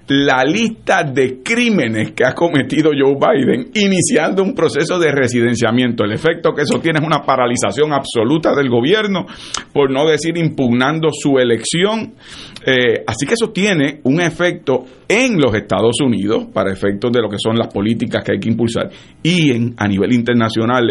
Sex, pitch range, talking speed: male, 115-145 Hz, 170 wpm